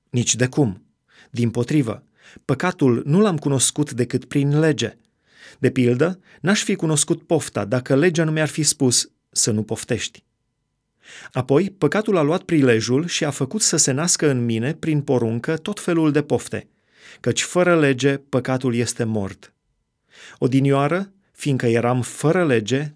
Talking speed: 150 wpm